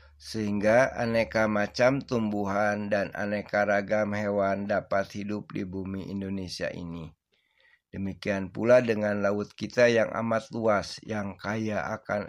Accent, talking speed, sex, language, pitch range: native, 120 wpm, male, Indonesian, 95-110 Hz